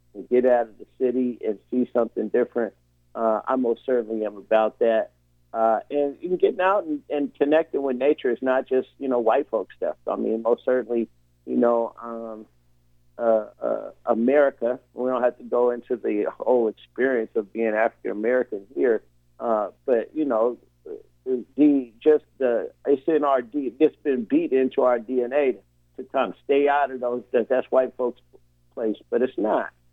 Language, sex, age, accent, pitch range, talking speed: English, male, 50-69, American, 110-140 Hz, 175 wpm